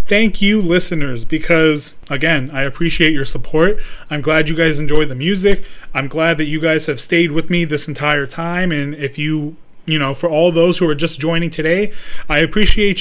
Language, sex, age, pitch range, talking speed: English, male, 30-49, 150-190 Hz, 200 wpm